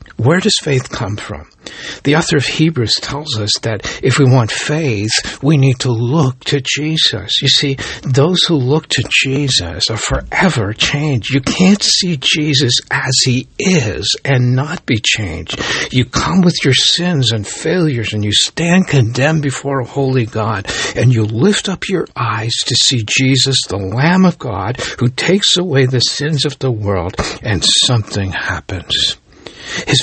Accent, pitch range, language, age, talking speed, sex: American, 115-155 Hz, English, 60-79, 165 wpm, male